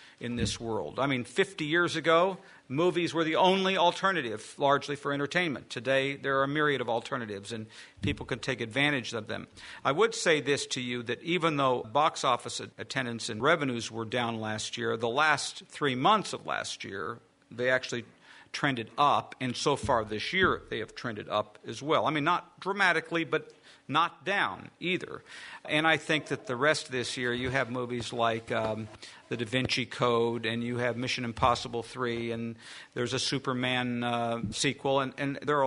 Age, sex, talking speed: 50-69, male, 190 wpm